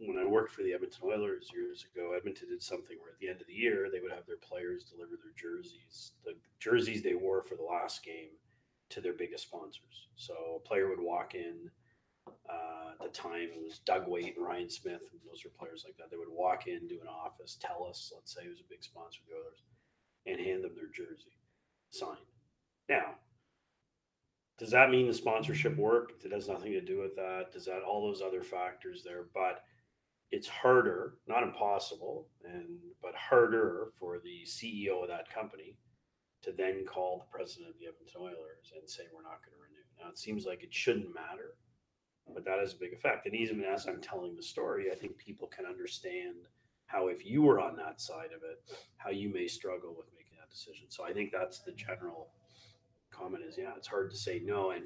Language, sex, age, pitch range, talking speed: English, male, 30-49, 335-415 Hz, 210 wpm